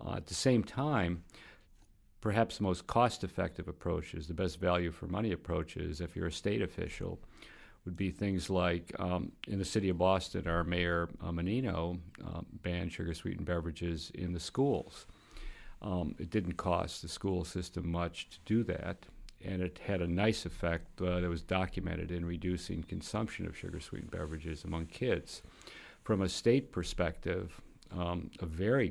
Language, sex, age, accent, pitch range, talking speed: English, male, 50-69, American, 85-100 Hz, 160 wpm